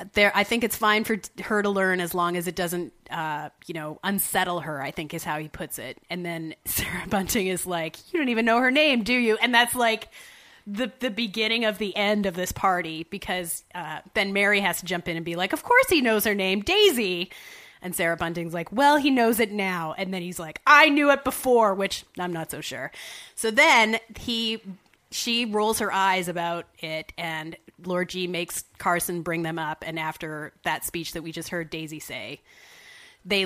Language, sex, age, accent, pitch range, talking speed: English, female, 30-49, American, 170-225 Hz, 215 wpm